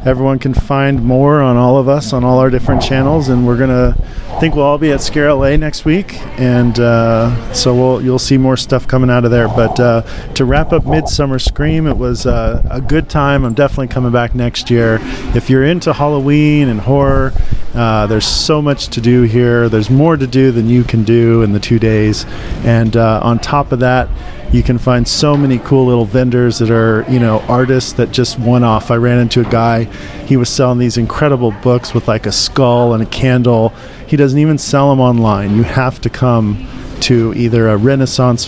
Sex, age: male, 40-59